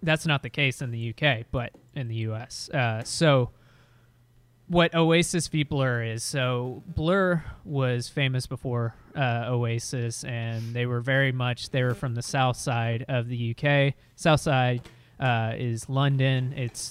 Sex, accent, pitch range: male, American, 120-140 Hz